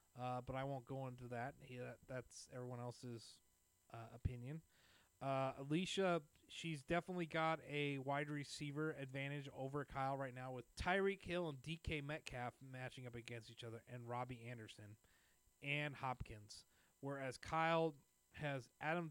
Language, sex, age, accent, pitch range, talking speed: English, male, 30-49, American, 120-145 Hz, 145 wpm